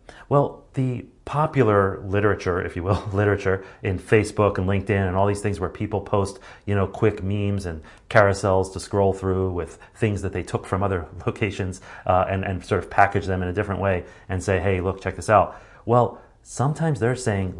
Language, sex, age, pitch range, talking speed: English, male, 30-49, 95-110 Hz, 200 wpm